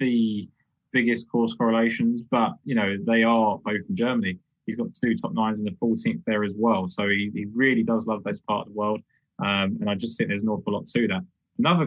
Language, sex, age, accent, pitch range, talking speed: English, male, 20-39, British, 105-145 Hz, 235 wpm